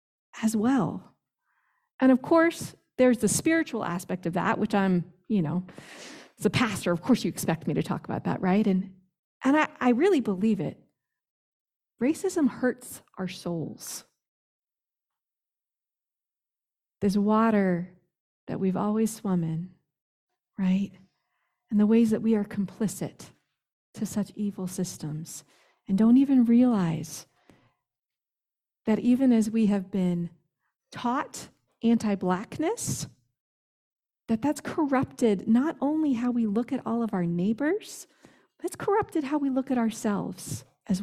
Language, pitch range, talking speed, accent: English, 185-260 Hz, 135 wpm, American